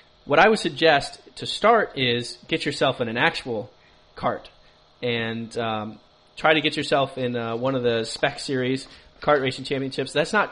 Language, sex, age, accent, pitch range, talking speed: English, male, 20-39, American, 125-150 Hz, 175 wpm